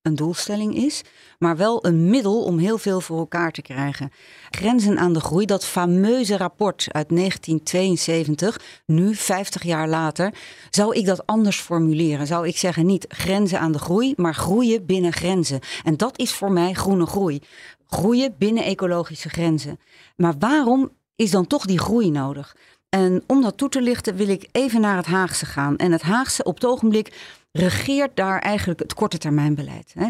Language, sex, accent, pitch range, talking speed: Dutch, female, Dutch, 160-210 Hz, 175 wpm